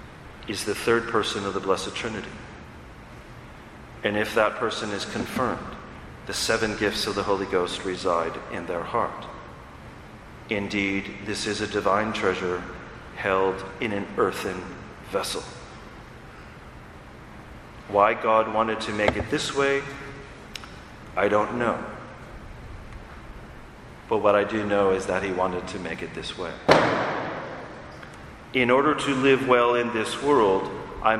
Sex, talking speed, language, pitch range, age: male, 135 wpm, English, 100-125 Hz, 40-59